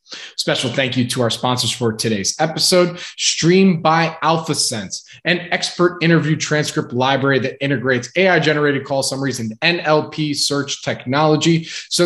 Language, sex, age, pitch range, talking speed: English, male, 20-39, 130-165 Hz, 140 wpm